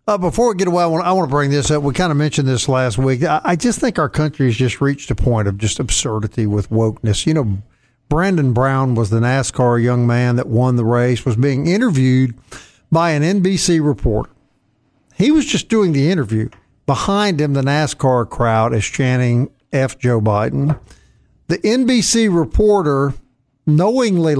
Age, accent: 50-69, American